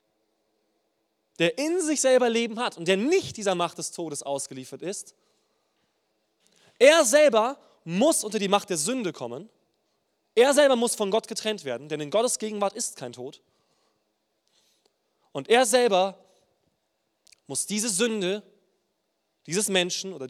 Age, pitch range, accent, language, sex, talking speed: 30-49, 130-210 Hz, German, German, male, 140 wpm